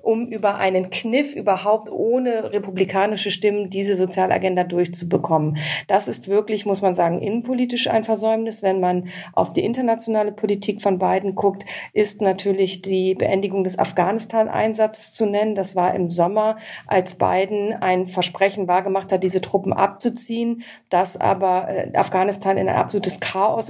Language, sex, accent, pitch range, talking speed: German, female, German, 185-220 Hz, 145 wpm